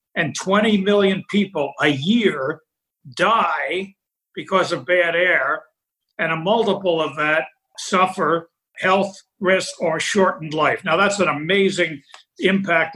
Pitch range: 155-190 Hz